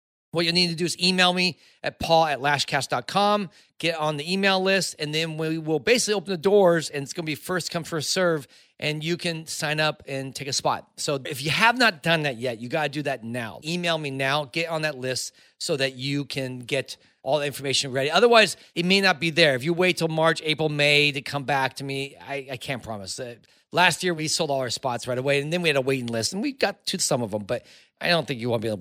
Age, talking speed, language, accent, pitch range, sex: 30-49, 265 wpm, English, American, 140-190 Hz, male